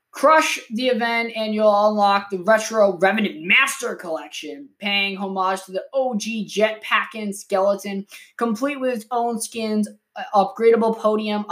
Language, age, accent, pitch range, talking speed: English, 20-39, American, 190-235 Hz, 130 wpm